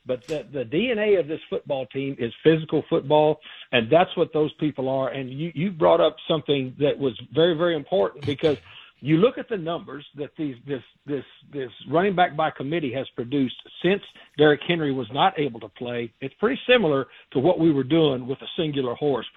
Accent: American